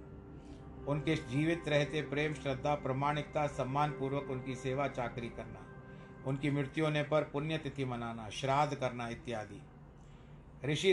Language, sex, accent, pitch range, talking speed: Hindi, male, native, 130-145 Hz, 125 wpm